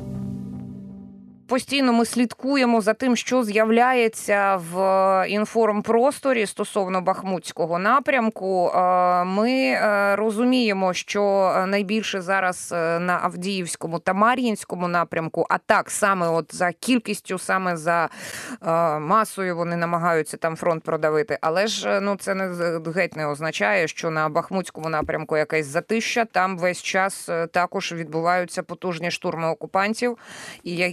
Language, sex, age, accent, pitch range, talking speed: Ukrainian, female, 20-39, native, 170-215 Hz, 115 wpm